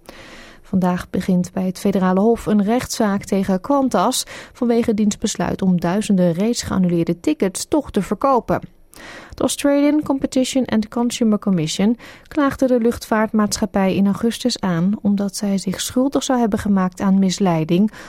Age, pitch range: 30-49, 185-240 Hz